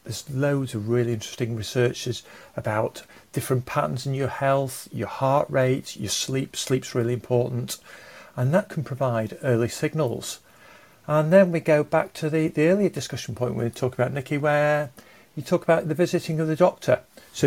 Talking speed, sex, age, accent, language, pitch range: 180 wpm, male, 50-69, British, English, 135-165 Hz